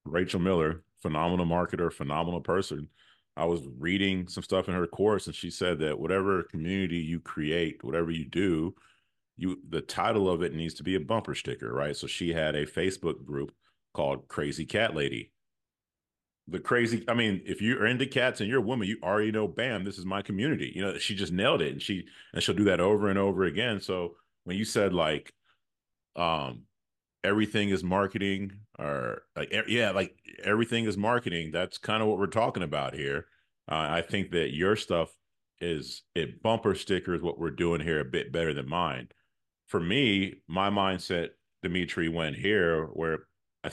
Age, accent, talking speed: 30-49, American, 185 wpm